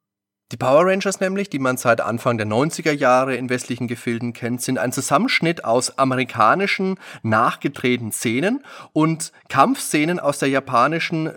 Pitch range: 120-140 Hz